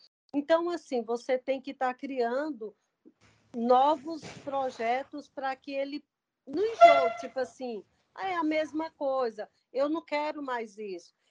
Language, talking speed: Portuguese, 140 wpm